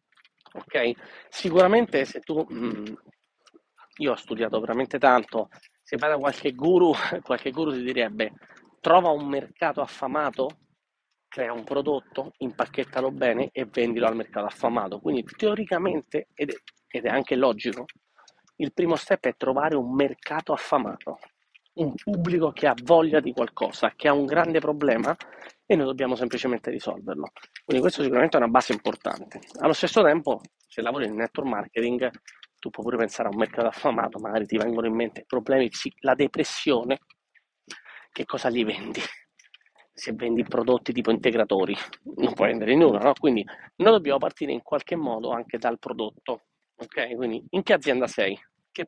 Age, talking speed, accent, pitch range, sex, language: 30-49, 155 wpm, native, 120-150 Hz, male, Italian